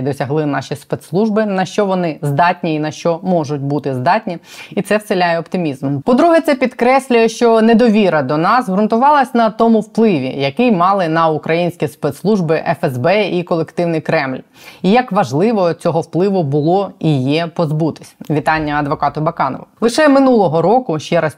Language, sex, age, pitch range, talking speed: Ukrainian, female, 20-39, 150-190 Hz, 150 wpm